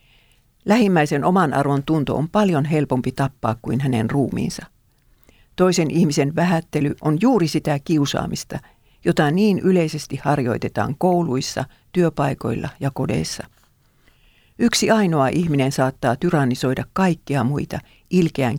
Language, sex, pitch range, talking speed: Finnish, female, 130-170 Hz, 110 wpm